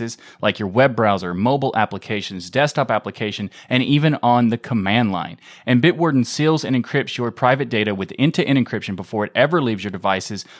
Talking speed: 175 wpm